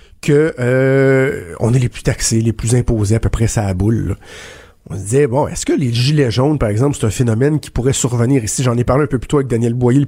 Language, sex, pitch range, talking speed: French, male, 120-165 Hz, 275 wpm